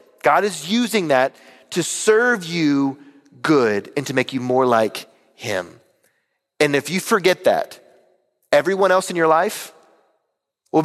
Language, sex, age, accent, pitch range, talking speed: English, male, 30-49, American, 145-215 Hz, 145 wpm